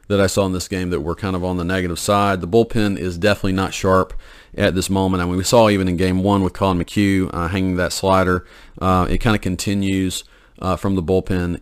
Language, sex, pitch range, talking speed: English, male, 85-100 Hz, 245 wpm